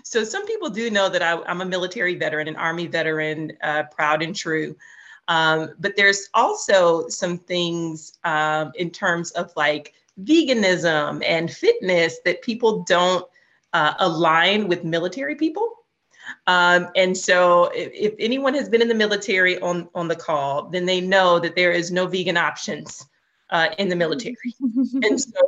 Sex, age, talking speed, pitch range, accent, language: female, 30-49, 160 wpm, 160-205 Hz, American, English